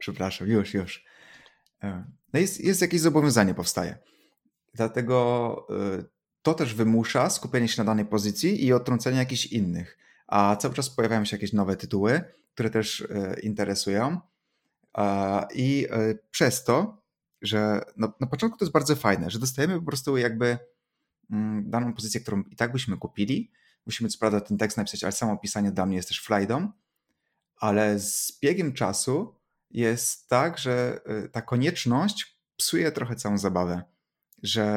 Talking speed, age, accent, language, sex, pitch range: 145 wpm, 30-49, native, Polish, male, 100-120 Hz